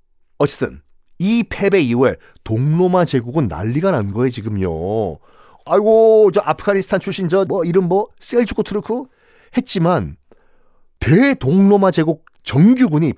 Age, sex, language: 40-59, male, Korean